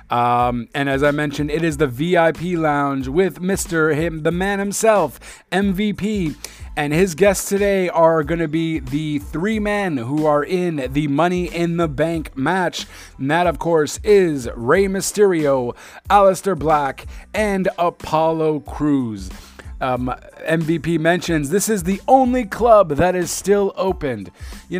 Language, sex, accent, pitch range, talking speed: English, male, American, 140-180 Hz, 150 wpm